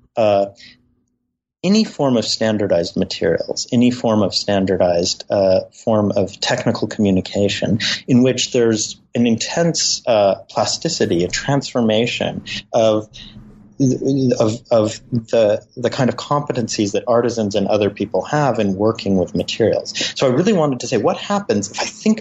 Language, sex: English, male